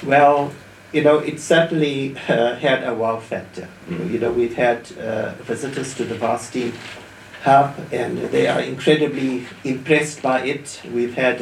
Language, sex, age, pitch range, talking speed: English, male, 50-69, 110-130 Hz, 150 wpm